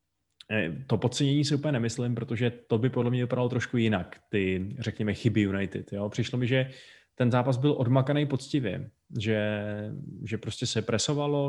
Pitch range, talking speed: 105-120 Hz, 160 wpm